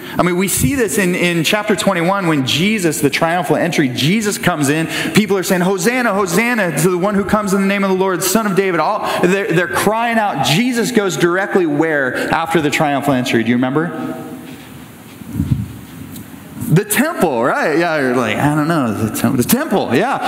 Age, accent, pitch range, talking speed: 30-49, American, 155-225 Hz, 195 wpm